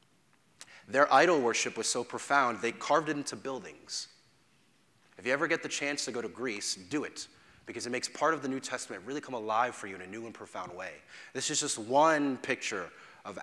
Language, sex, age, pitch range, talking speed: English, male, 30-49, 115-145 Hz, 215 wpm